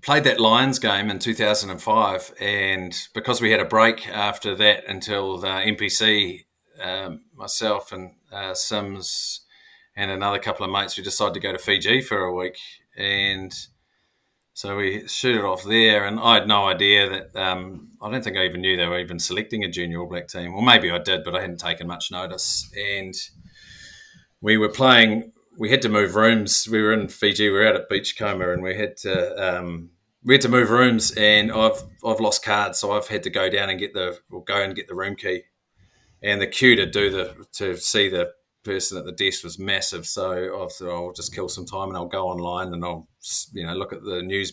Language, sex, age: English, male, 30-49